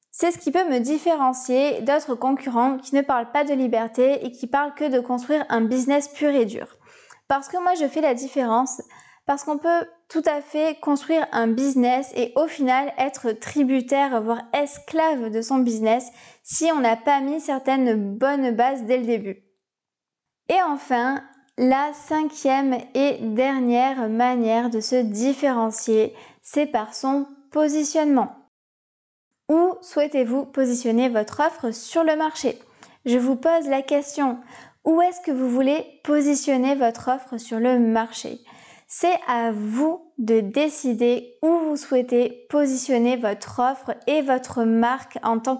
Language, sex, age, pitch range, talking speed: French, female, 20-39, 240-290 Hz, 155 wpm